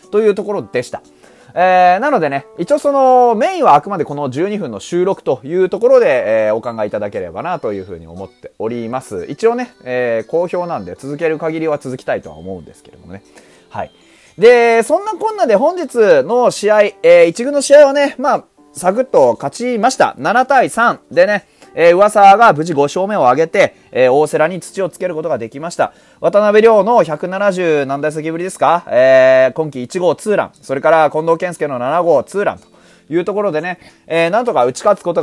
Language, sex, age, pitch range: Japanese, male, 30-49, 140-225 Hz